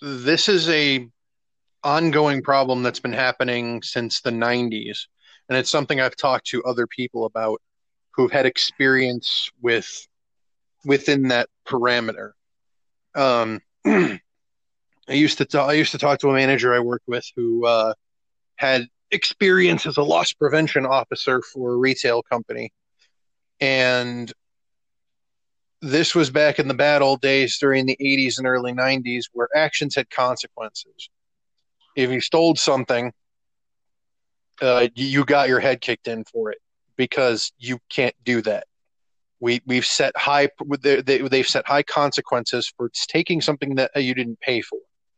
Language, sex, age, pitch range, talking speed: English, male, 30-49, 120-150 Hz, 145 wpm